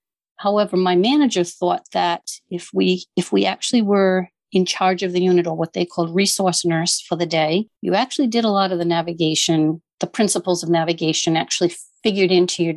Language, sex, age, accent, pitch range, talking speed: English, female, 50-69, American, 175-210 Hz, 195 wpm